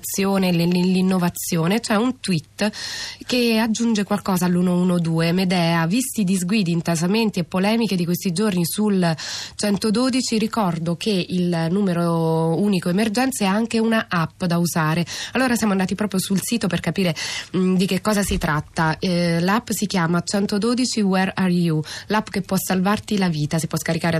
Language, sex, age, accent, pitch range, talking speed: Italian, female, 20-39, native, 170-210 Hz, 155 wpm